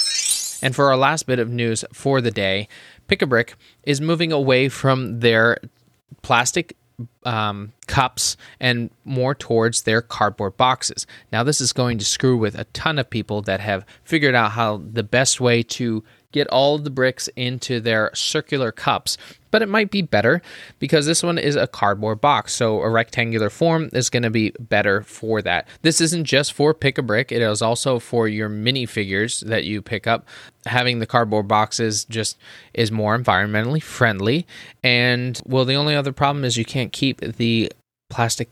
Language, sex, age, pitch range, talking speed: English, male, 20-39, 110-130 Hz, 180 wpm